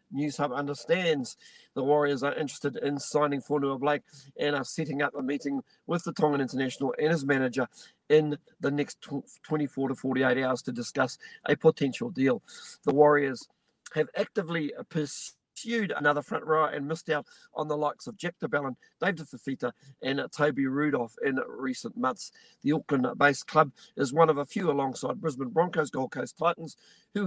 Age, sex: 50-69, male